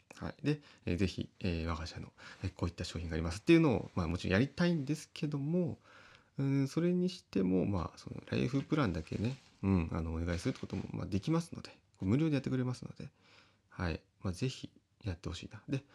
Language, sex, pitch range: Japanese, male, 90-130 Hz